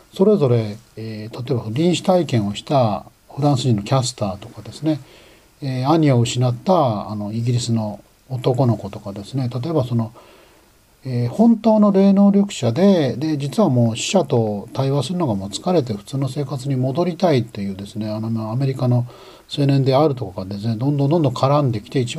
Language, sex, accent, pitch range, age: Japanese, male, native, 110-160 Hz, 40-59